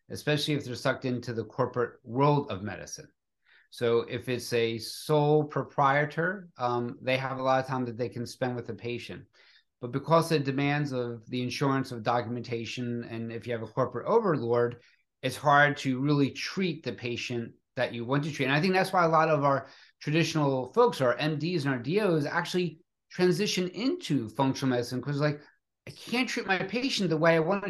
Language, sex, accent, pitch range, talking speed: English, male, American, 125-155 Hz, 195 wpm